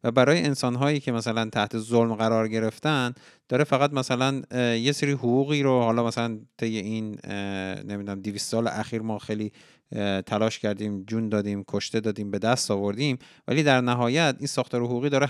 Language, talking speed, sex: Persian, 165 wpm, male